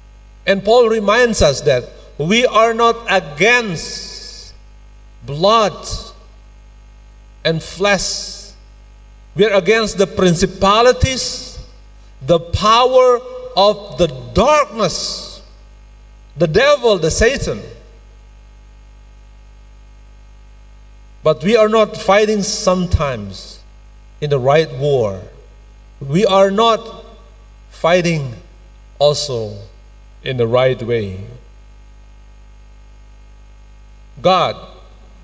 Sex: male